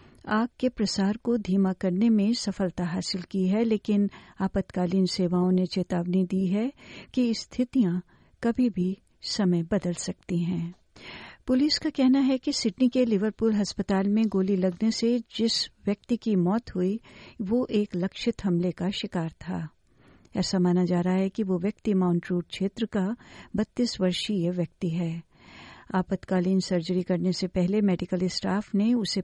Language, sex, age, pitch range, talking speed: Hindi, female, 50-69, 180-220 Hz, 155 wpm